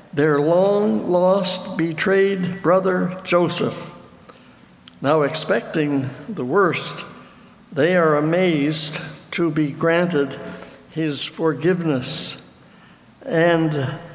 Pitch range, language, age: 155-190 Hz, English, 60-79